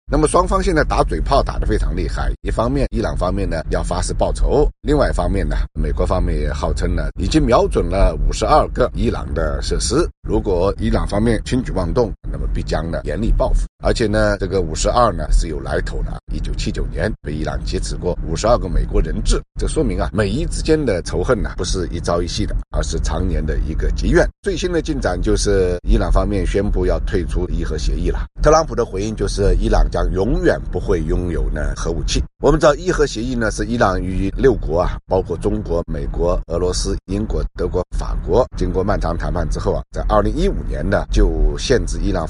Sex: male